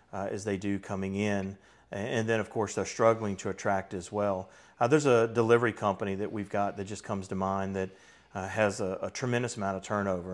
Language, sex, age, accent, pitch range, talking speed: English, male, 40-59, American, 100-115 Hz, 225 wpm